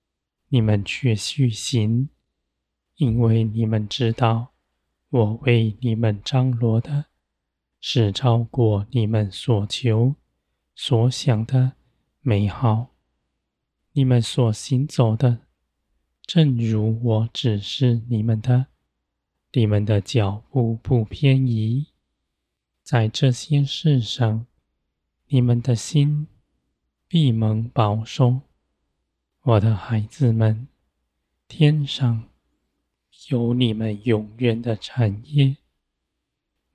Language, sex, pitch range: Chinese, male, 100-125 Hz